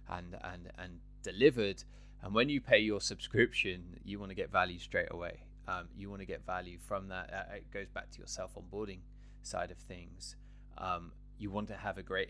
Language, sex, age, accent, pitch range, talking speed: English, male, 20-39, British, 90-115 Hz, 200 wpm